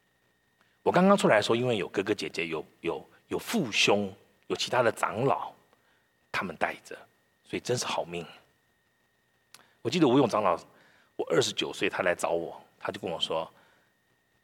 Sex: male